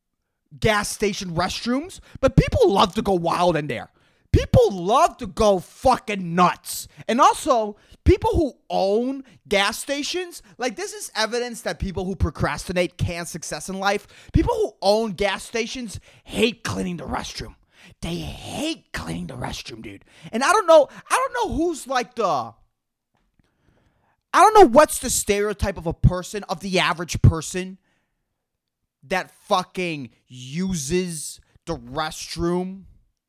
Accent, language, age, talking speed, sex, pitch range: American, English, 30-49, 140 wpm, male, 175-295 Hz